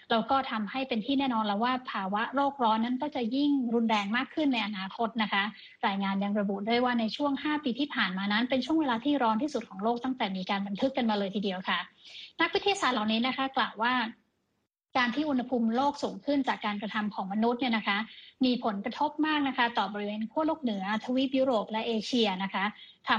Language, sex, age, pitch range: Thai, female, 20-39, 215-270 Hz